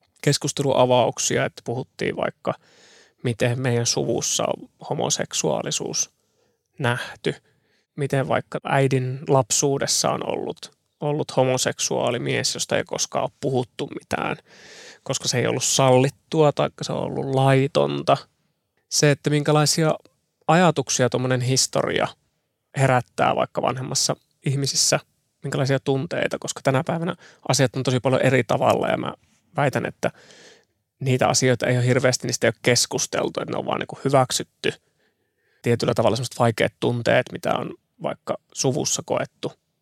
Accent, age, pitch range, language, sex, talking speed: native, 20-39, 125-145 Hz, Finnish, male, 125 wpm